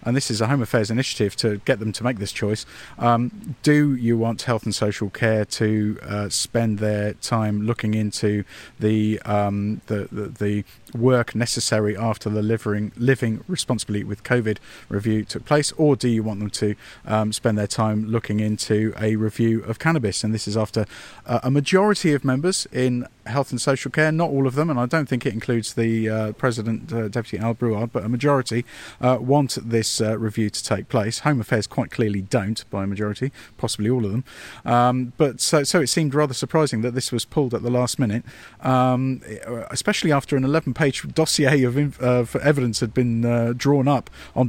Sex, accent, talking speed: male, British, 200 wpm